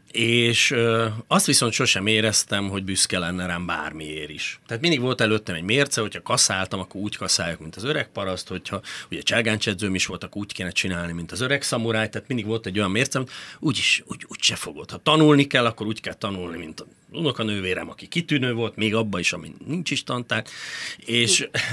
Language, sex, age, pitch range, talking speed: Hungarian, male, 40-59, 95-125 Hz, 195 wpm